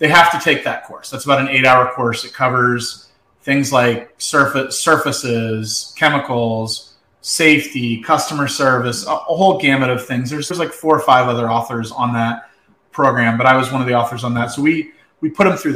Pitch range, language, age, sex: 120-155 Hz, English, 30-49, male